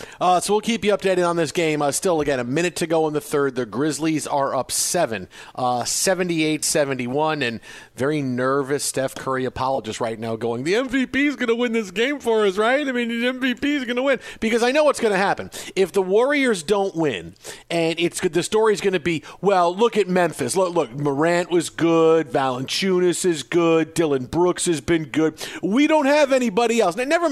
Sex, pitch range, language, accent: male, 150-210 Hz, English, American